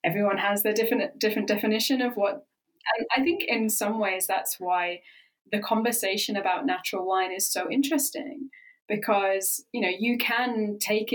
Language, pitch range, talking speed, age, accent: English, 200-270 Hz, 160 wpm, 20-39, British